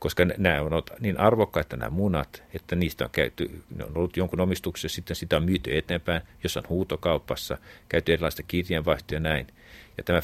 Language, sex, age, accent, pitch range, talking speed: Finnish, male, 50-69, native, 80-100 Hz, 180 wpm